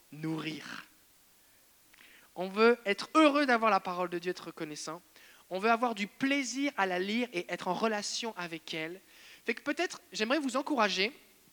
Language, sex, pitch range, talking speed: French, male, 165-230 Hz, 165 wpm